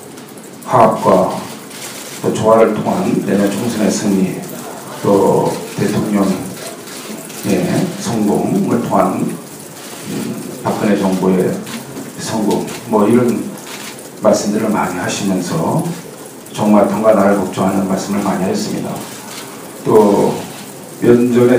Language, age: Korean, 40-59